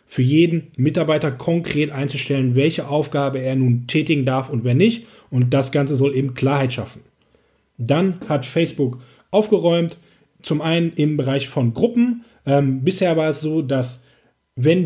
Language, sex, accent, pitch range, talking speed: German, male, German, 140-165 Hz, 155 wpm